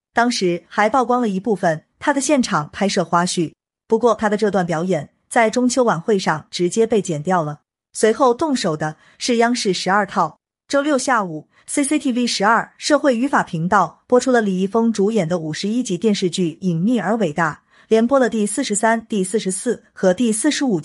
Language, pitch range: Chinese, 175-230 Hz